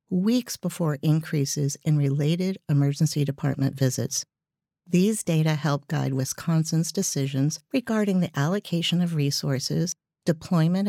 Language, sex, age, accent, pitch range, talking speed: English, female, 50-69, American, 145-185 Hz, 110 wpm